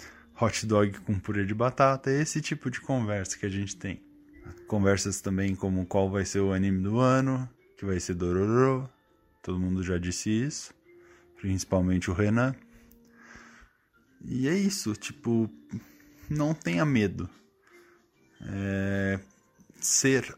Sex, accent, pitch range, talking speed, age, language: male, Brazilian, 95-130 Hz, 135 wpm, 10-29, Portuguese